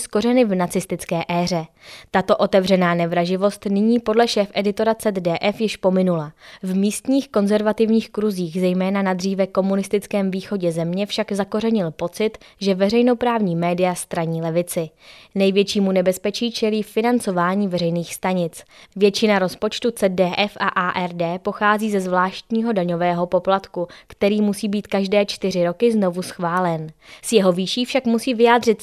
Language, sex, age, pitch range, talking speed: Czech, female, 20-39, 180-215 Hz, 130 wpm